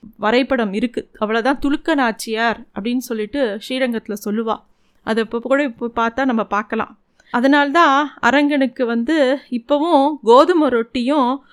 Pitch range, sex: 230-290 Hz, female